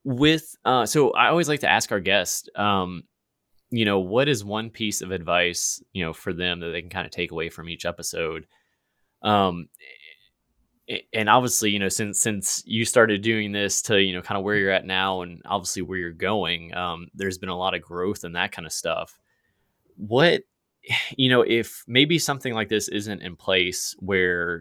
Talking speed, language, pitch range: 200 wpm, English, 90-105 Hz